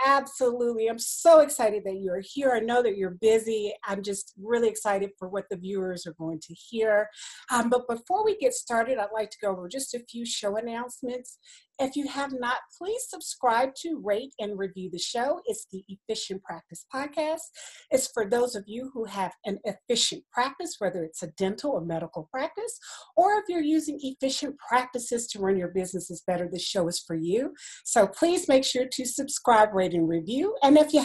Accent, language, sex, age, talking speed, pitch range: American, English, female, 40-59, 195 wpm, 190-270 Hz